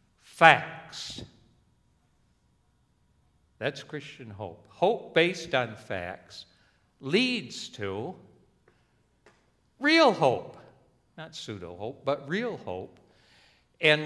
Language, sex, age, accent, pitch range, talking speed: English, male, 60-79, American, 110-155 Hz, 75 wpm